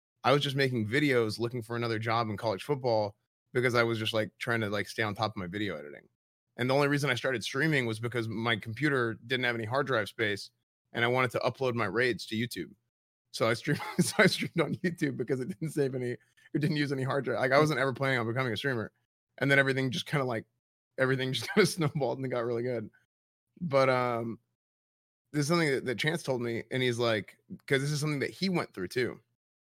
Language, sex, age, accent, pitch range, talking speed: English, male, 30-49, American, 110-135 Hz, 240 wpm